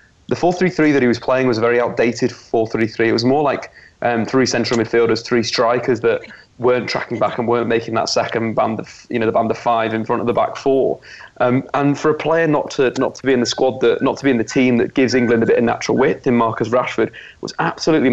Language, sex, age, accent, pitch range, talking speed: English, male, 30-49, British, 120-140 Hz, 255 wpm